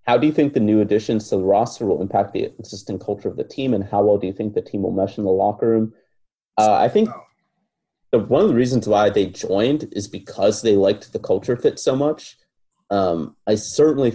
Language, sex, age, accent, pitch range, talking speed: English, male, 30-49, American, 100-145 Hz, 230 wpm